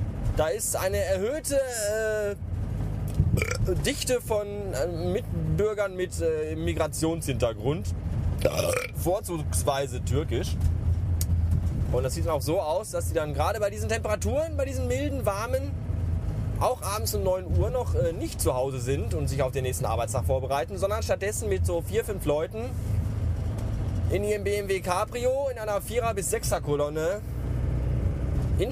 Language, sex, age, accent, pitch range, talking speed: German, male, 20-39, German, 85-115 Hz, 145 wpm